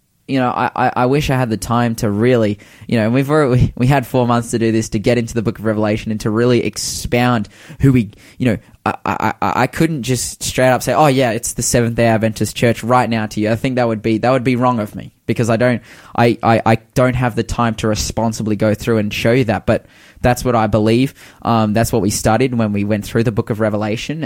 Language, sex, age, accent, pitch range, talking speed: English, male, 10-29, Australian, 110-130 Hz, 260 wpm